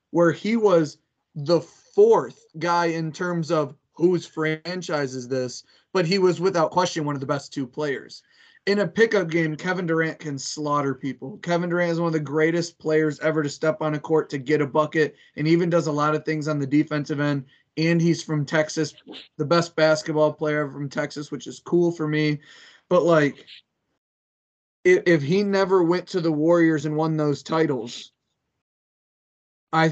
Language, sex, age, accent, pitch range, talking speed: English, male, 20-39, American, 145-165 Hz, 185 wpm